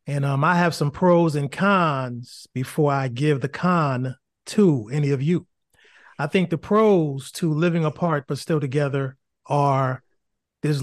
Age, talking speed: 30-49, 160 wpm